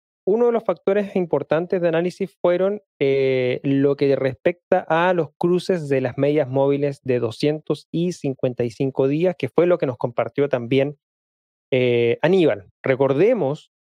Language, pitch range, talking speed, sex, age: Spanish, 130-175 Hz, 140 wpm, male, 30-49